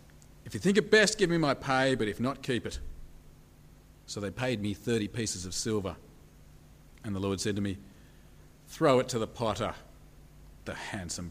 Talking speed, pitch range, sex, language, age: 185 wpm, 100-130 Hz, male, English, 40-59